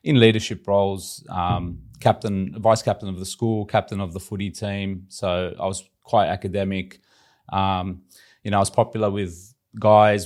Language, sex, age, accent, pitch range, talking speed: English, male, 30-49, Australian, 95-110 Hz, 165 wpm